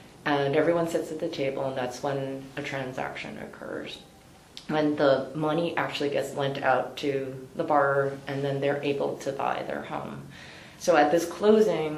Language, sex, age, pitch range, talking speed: English, female, 30-49, 135-150 Hz, 170 wpm